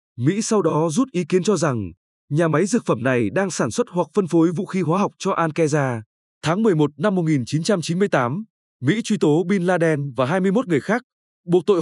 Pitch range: 150-195 Hz